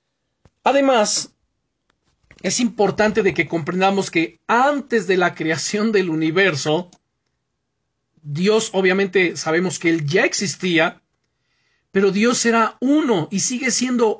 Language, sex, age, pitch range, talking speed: Spanish, male, 40-59, 170-215 Hz, 115 wpm